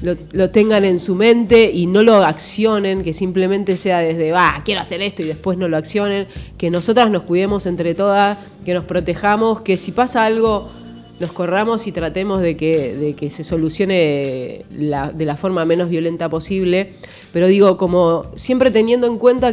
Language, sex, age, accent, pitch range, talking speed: Spanish, female, 30-49, Argentinian, 170-215 Hz, 185 wpm